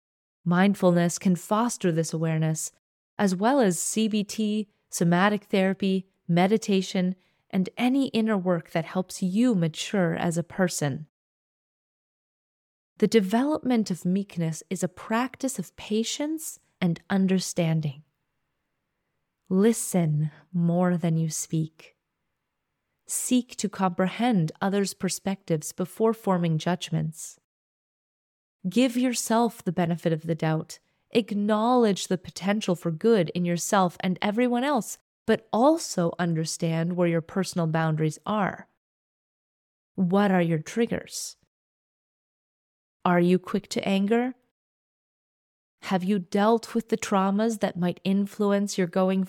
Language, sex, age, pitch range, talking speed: English, female, 30-49, 175-220 Hz, 110 wpm